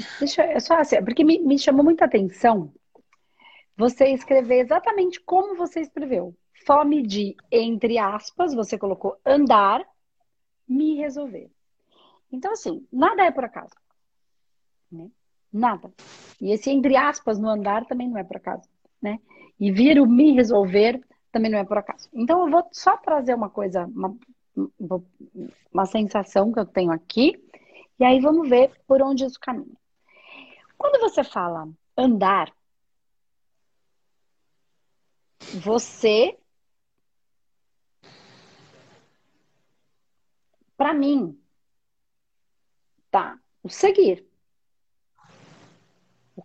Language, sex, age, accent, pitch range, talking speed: Portuguese, female, 40-59, Brazilian, 210-295 Hz, 115 wpm